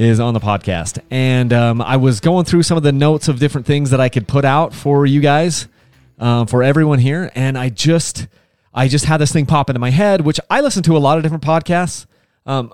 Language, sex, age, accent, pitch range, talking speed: English, male, 30-49, American, 120-155 Hz, 240 wpm